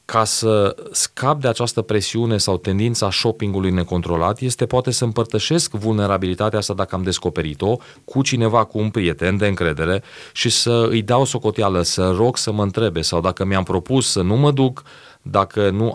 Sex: male